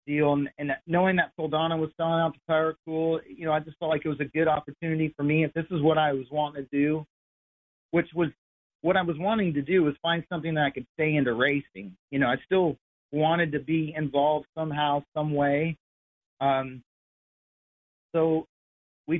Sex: male